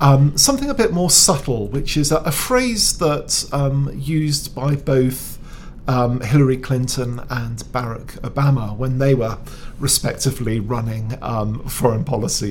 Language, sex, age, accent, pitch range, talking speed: English, male, 50-69, British, 120-145 Hz, 140 wpm